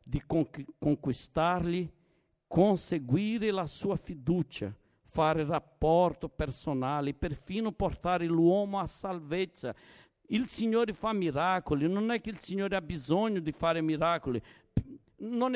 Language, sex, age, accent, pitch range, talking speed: Italian, male, 60-79, Brazilian, 160-210 Hz, 110 wpm